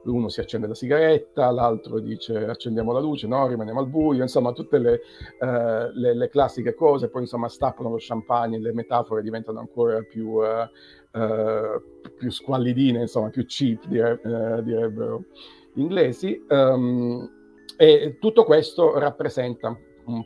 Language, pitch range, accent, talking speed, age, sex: Italian, 115-135 Hz, native, 150 wpm, 50-69, male